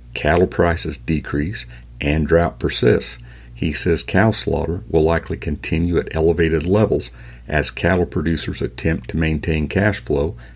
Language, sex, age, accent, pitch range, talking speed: English, male, 50-69, American, 70-90 Hz, 135 wpm